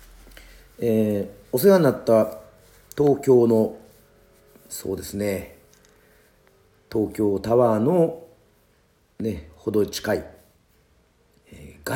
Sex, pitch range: male, 90-115 Hz